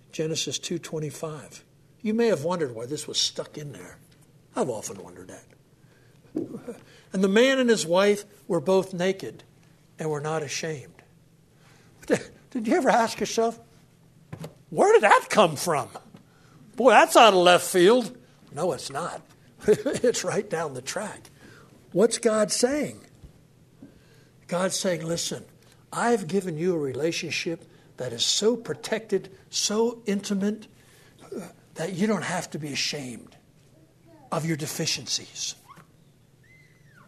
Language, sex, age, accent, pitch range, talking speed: English, male, 60-79, American, 145-200 Hz, 130 wpm